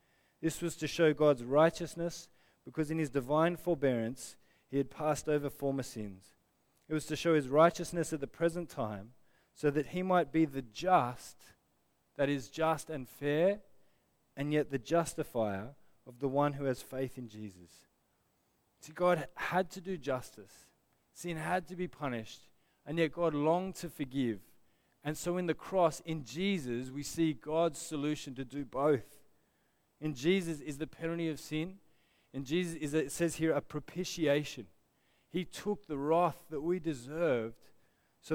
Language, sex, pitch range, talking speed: English, male, 140-170 Hz, 165 wpm